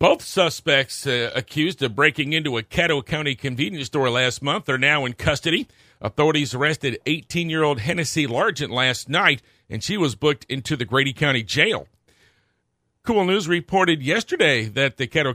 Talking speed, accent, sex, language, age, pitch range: 160 wpm, American, male, English, 50-69, 125-155 Hz